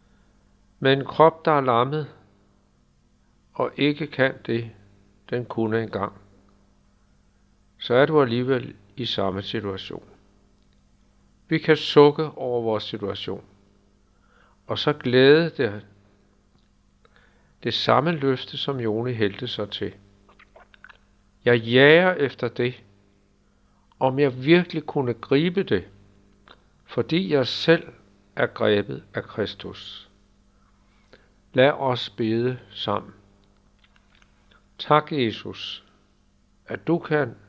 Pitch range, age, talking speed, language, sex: 100-130 Hz, 60-79, 100 wpm, Danish, male